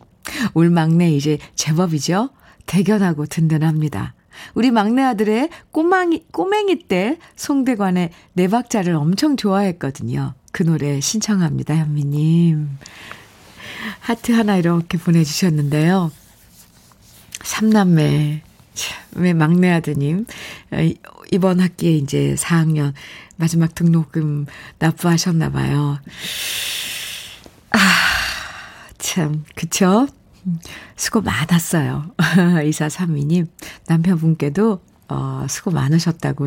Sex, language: female, Korean